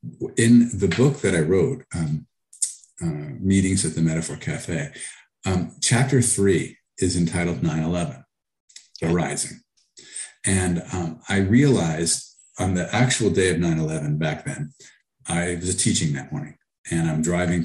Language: English